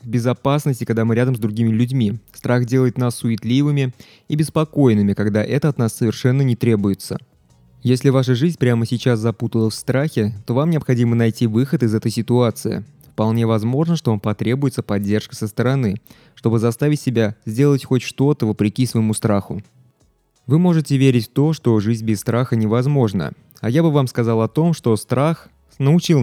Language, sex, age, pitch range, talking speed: Russian, male, 20-39, 110-130 Hz, 170 wpm